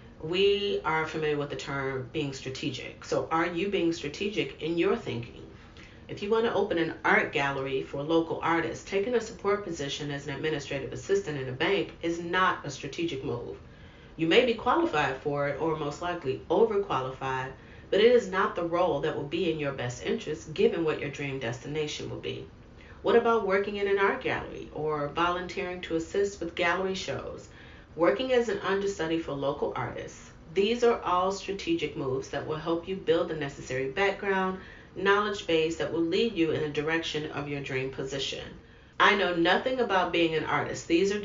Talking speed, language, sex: 185 wpm, English, female